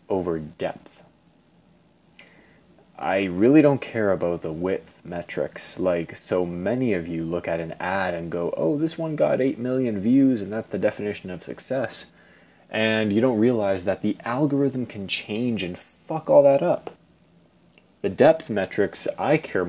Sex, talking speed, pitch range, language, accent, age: male, 160 wpm, 85-120 Hz, English, American, 20-39